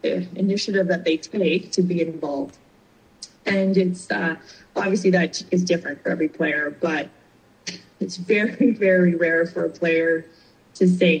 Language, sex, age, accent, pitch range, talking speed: English, female, 20-39, American, 170-190 Hz, 145 wpm